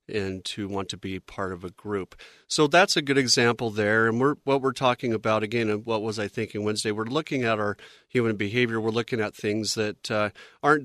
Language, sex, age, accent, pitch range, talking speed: English, male, 40-59, American, 105-120 Hz, 225 wpm